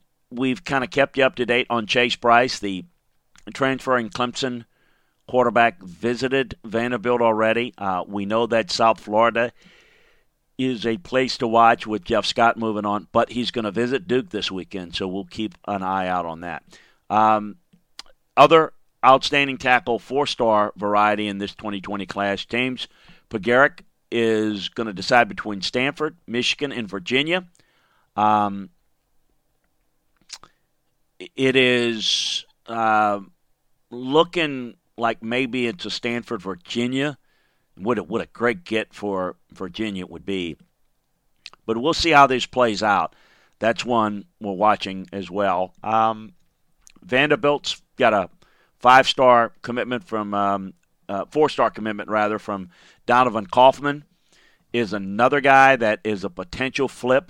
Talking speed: 135 wpm